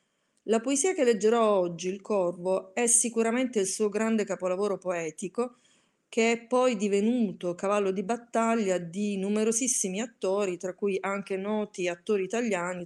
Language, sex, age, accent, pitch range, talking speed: Italian, female, 30-49, native, 190-240 Hz, 140 wpm